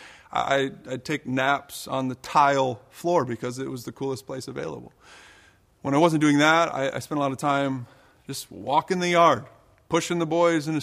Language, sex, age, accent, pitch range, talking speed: English, male, 30-49, American, 135-225 Hz, 200 wpm